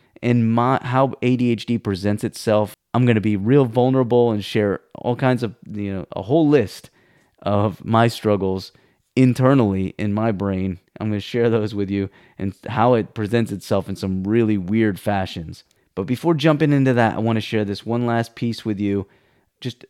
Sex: male